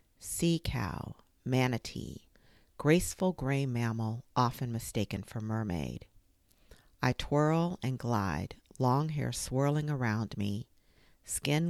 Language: English